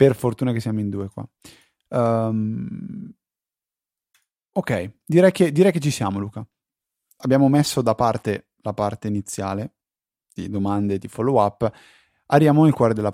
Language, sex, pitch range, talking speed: Italian, male, 105-130 Hz, 145 wpm